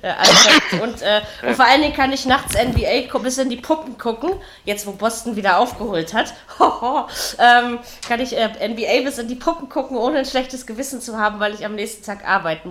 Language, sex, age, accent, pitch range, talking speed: German, female, 20-39, German, 180-240 Hz, 205 wpm